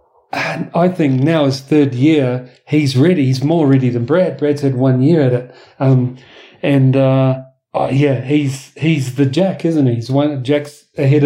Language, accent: English, British